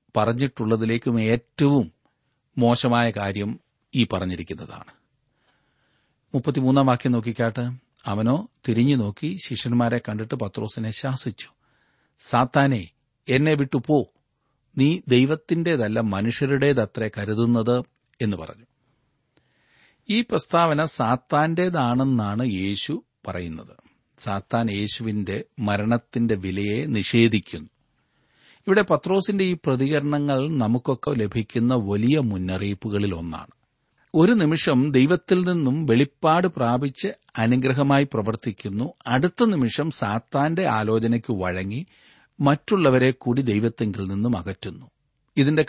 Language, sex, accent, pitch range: Malayalam, male, native, 115-145 Hz